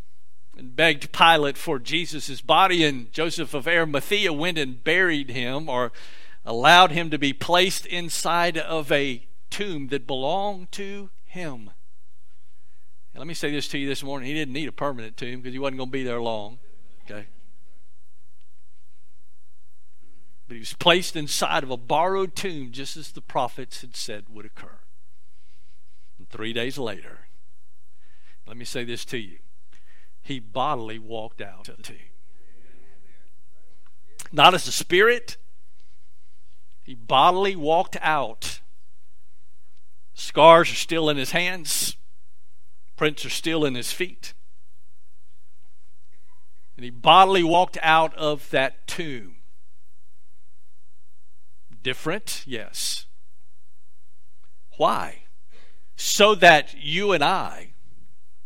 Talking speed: 125 wpm